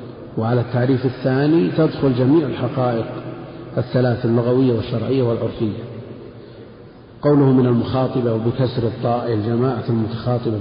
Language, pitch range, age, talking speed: Arabic, 115-130 Hz, 50-69, 100 wpm